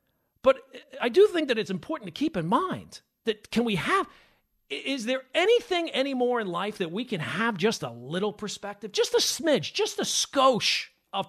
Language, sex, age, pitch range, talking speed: English, male, 40-59, 185-265 Hz, 190 wpm